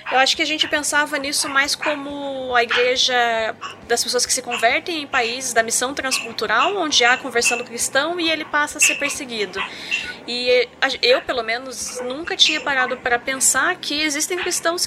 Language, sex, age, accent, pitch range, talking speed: Portuguese, female, 20-39, Brazilian, 230-295 Hz, 180 wpm